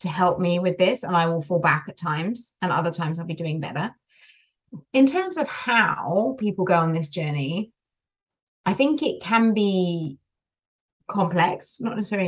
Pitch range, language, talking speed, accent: 160-205 Hz, English, 175 wpm, British